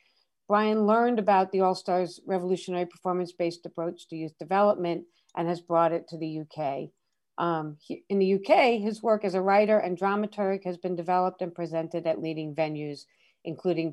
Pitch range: 155-190 Hz